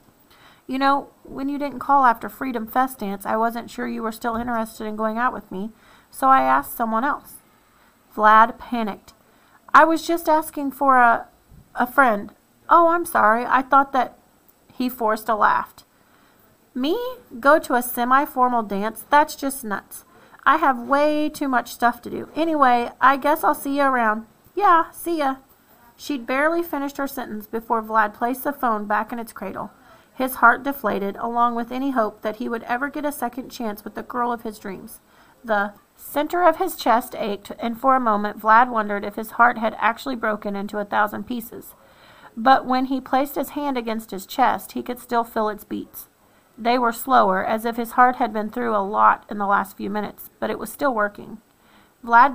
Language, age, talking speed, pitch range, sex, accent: English, 40-59, 195 wpm, 215-270 Hz, female, American